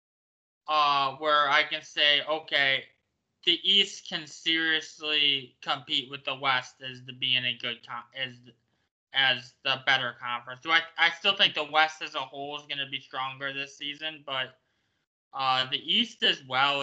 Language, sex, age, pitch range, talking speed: English, male, 20-39, 130-155 Hz, 170 wpm